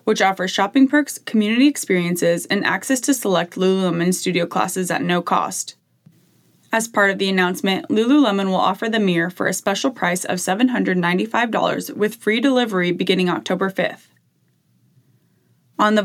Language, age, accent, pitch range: English, 20-39, American, 180-220 Hz